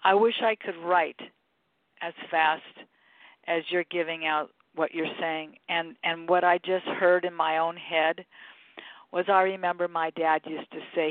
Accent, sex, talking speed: American, female, 175 wpm